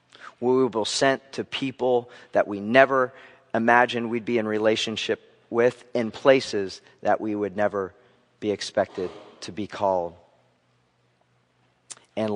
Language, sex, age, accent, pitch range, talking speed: English, male, 40-59, American, 105-125 Hz, 130 wpm